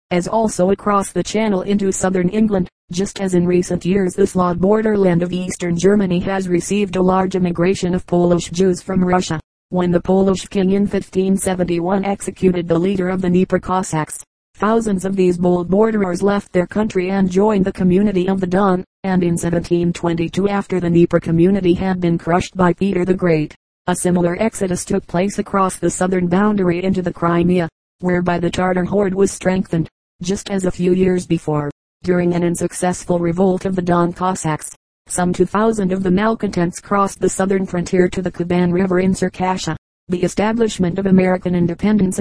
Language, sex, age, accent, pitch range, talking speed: English, female, 30-49, American, 175-195 Hz, 175 wpm